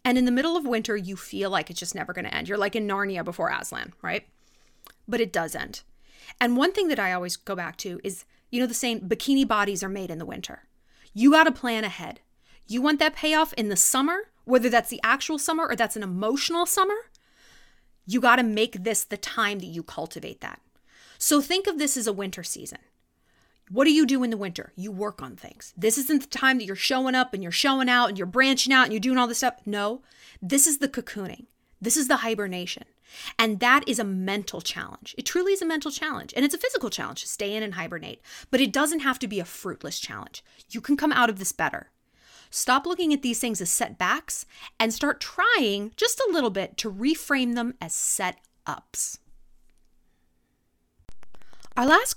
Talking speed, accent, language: 215 wpm, American, English